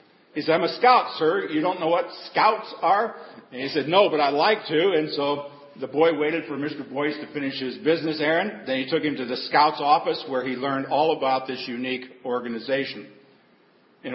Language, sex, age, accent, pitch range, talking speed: English, male, 50-69, American, 135-165 Hz, 210 wpm